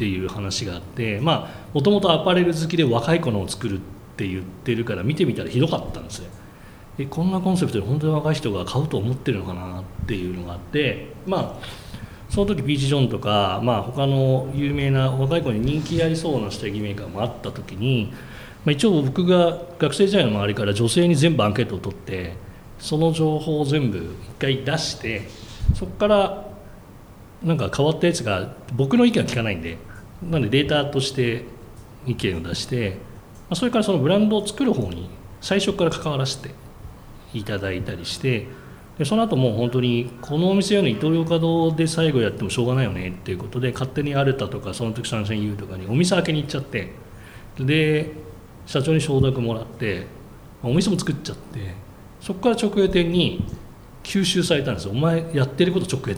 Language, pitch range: Japanese, 105-160 Hz